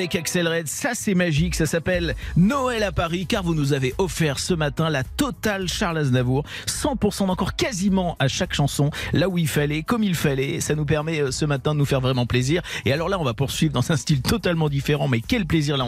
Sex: male